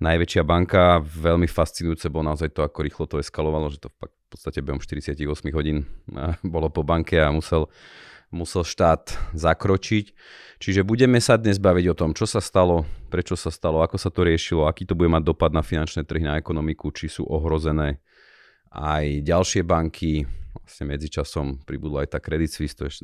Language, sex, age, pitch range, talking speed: Slovak, male, 30-49, 80-90 Hz, 175 wpm